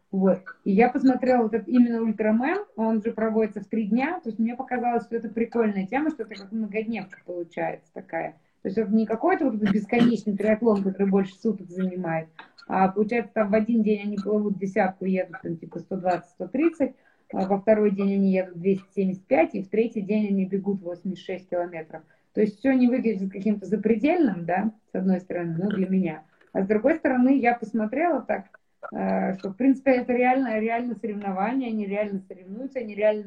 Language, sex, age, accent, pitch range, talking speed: Russian, female, 20-39, native, 195-240 Hz, 180 wpm